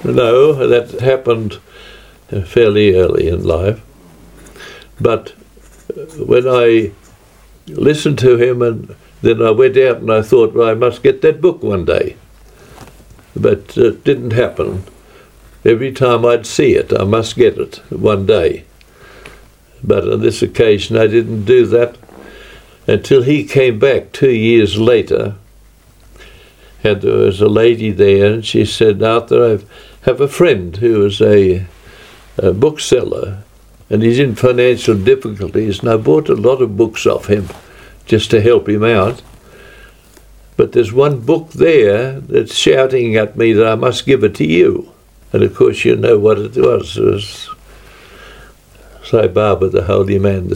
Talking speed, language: 150 wpm, English